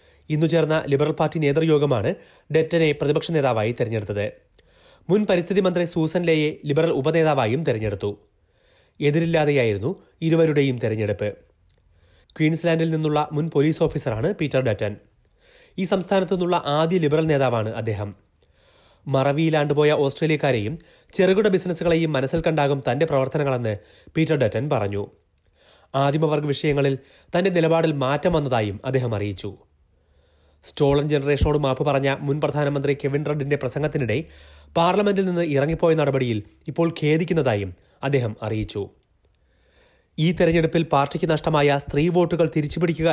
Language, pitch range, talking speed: Malayalam, 125-165 Hz, 105 wpm